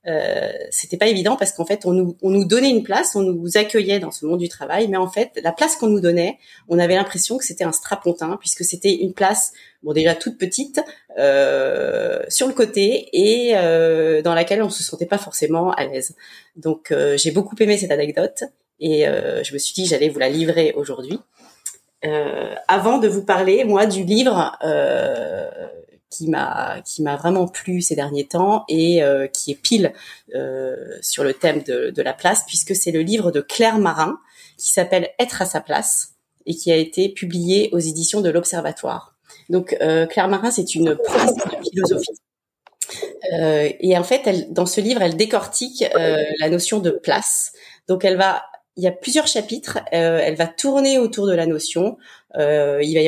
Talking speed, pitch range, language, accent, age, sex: 200 wpm, 165-225 Hz, English, French, 30-49, female